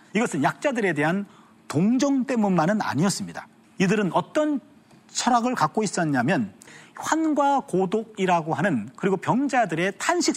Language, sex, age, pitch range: Korean, male, 40-59, 155-230 Hz